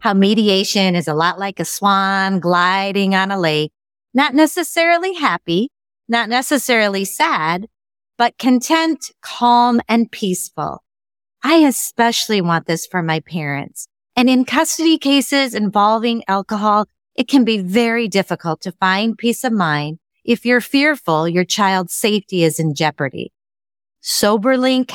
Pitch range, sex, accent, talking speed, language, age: 165-235 Hz, female, American, 135 wpm, English, 30-49